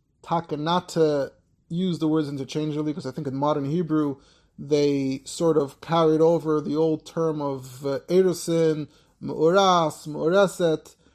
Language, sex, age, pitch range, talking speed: English, male, 30-49, 145-165 Hz, 135 wpm